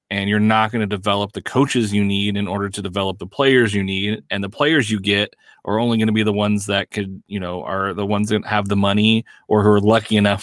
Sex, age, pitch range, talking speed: male, 30-49, 100-125 Hz, 265 wpm